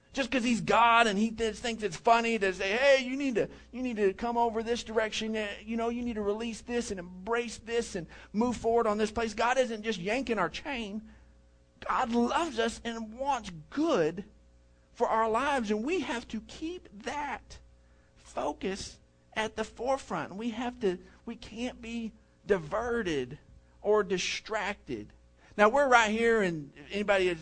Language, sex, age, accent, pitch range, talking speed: English, male, 50-69, American, 145-230 Hz, 175 wpm